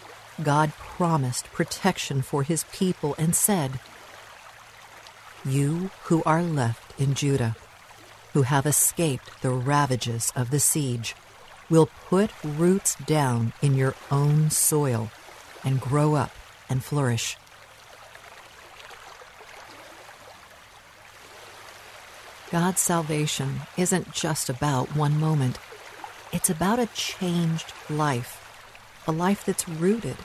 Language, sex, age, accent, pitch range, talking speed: English, female, 50-69, American, 130-170 Hz, 100 wpm